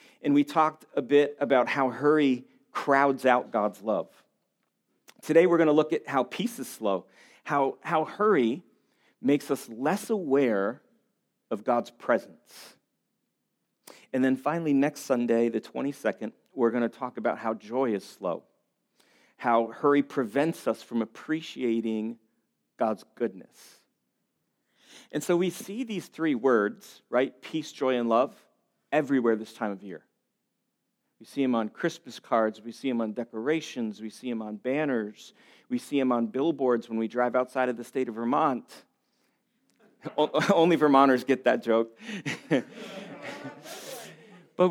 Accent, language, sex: American, English, male